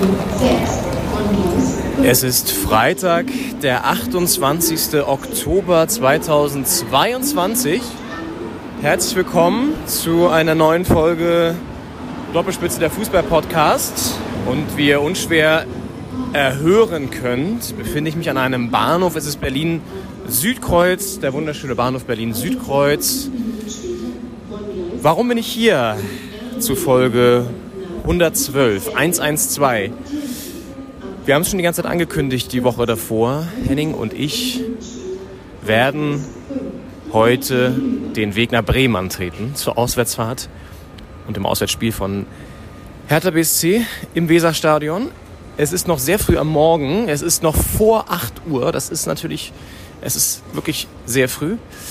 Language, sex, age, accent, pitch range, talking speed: German, male, 30-49, German, 125-175 Hz, 110 wpm